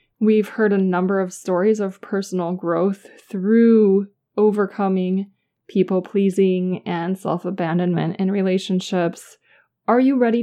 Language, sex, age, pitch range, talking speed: English, female, 20-39, 185-220 Hz, 110 wpm